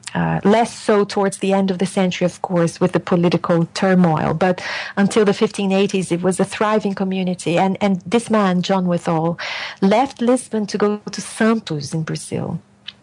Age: 40-59